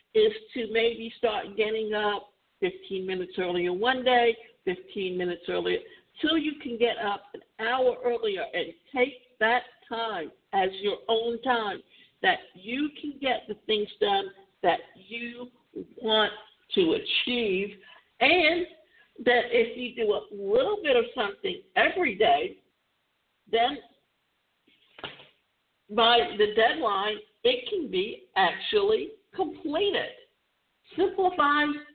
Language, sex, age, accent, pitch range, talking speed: English, female, 50-69, American, 220-340 Hz, 120 wpm